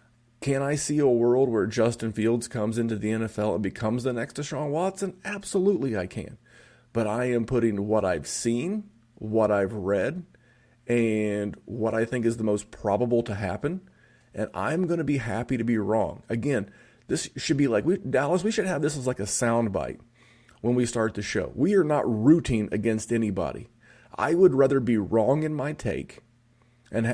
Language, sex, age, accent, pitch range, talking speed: English, male, 30-49, American, 105-125 Hz, 190 wpm